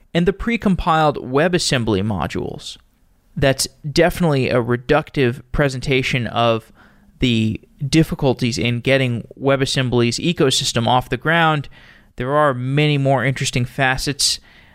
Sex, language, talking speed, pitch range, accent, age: male, English, 105 wpm, 120-150 Hz, American, 20-39